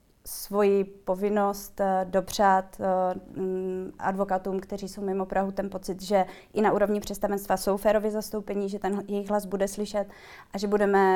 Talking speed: 145 wpm